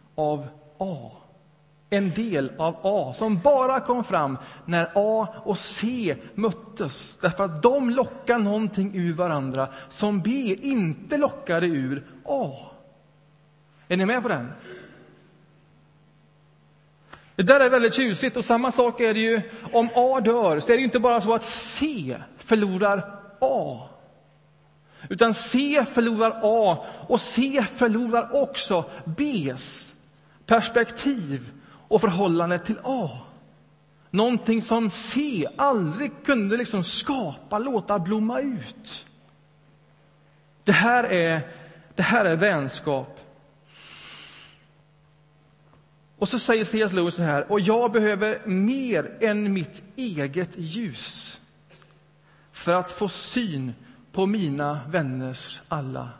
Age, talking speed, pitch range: 30-49, 120 wpm, 150-230 Hz